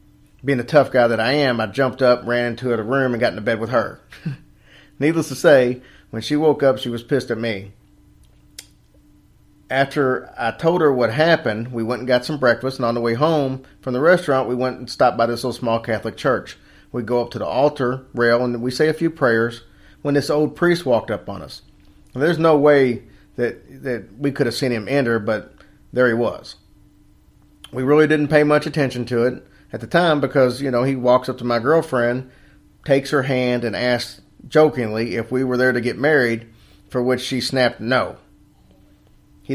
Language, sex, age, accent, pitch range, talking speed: English, male, 40-59, American, 115-140 Hz, 210 wpm